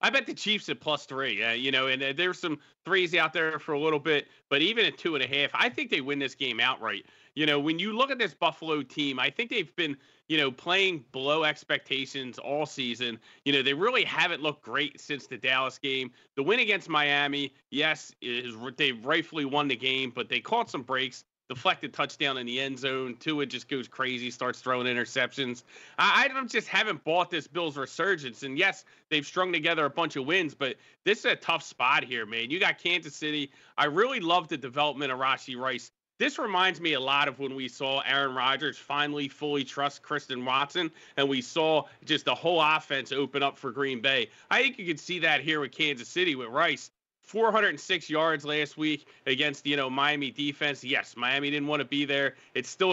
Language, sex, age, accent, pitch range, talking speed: English, male, 30-49, American, 135-165 Hz, 215 wpm